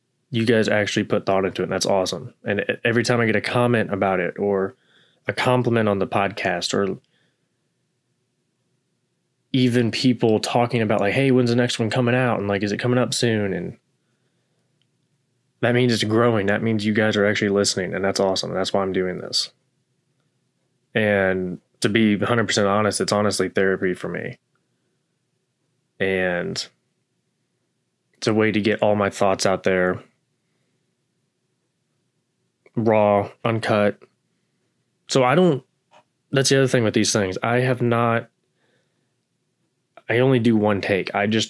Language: English